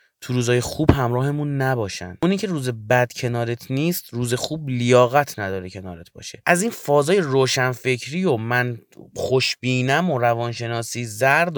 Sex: male